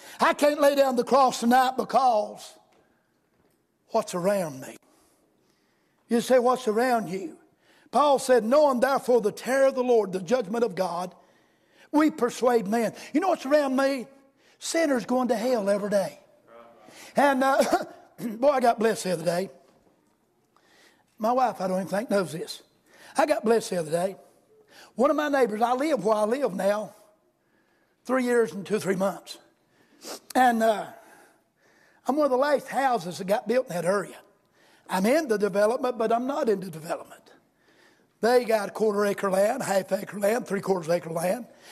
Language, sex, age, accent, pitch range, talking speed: English, male, 60-79, American, 205-270 Hz, 170 wpm